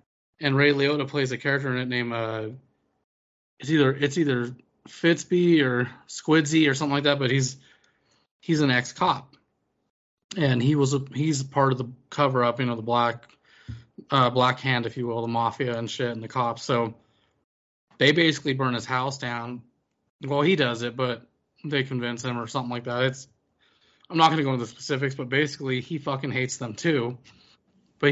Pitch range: 120-140 Hz